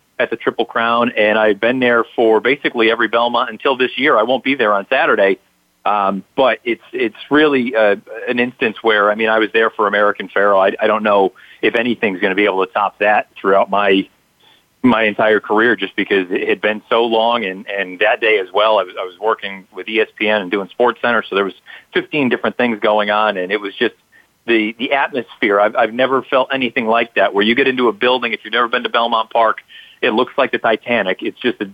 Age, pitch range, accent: 40-59, 105-130 Hz, American